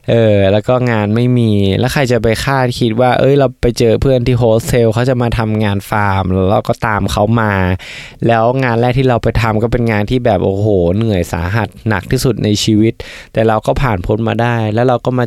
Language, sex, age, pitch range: Thai, male, 20-39, 100-125 Hz